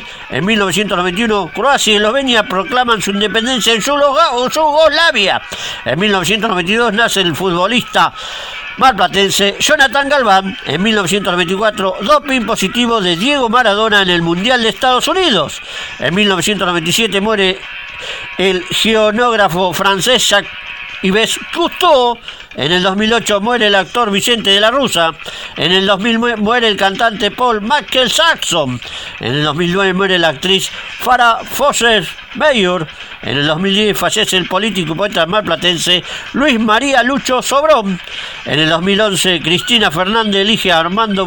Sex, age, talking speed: male, 50-69, 130 wpm